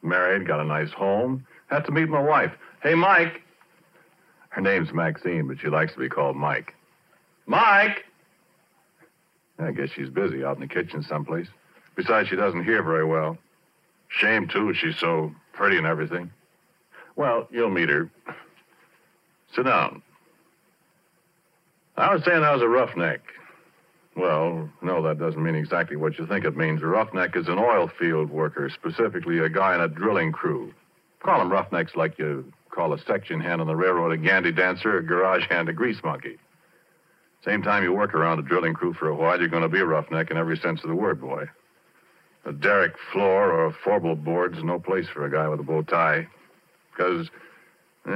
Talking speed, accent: 180 wpm, American